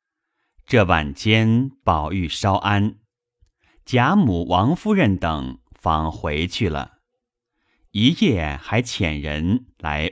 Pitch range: 85-120 Hz